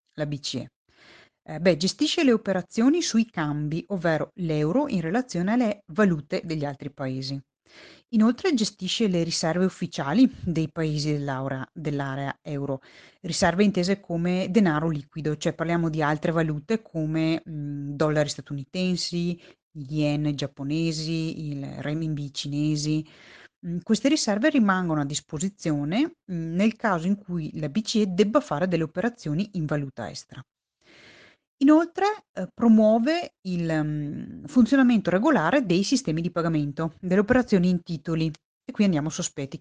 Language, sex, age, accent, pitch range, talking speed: Italian, female, 30-49, native, 150-205 Hz, 125 wpm